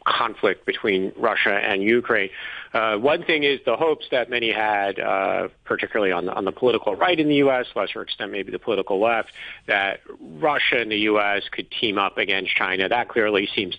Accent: American